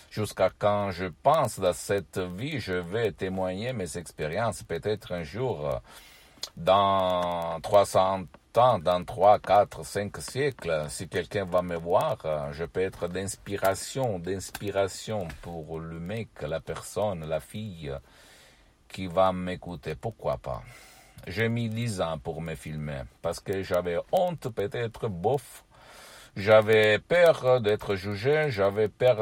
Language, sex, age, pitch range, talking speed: Italian, male, 60-79, 85-110 Hz, 130 wpm